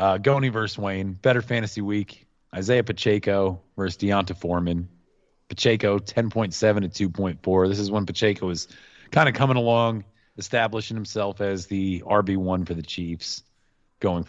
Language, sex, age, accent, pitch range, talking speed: English, male, 30-49, American, 90-110 Hz, 145 wpm